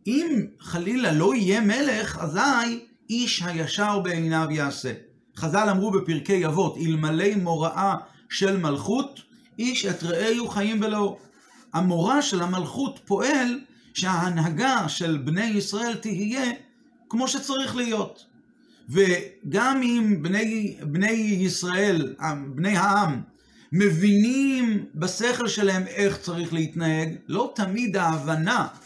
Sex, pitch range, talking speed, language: male, 180-230 Hz, 110 wpm, Hebrew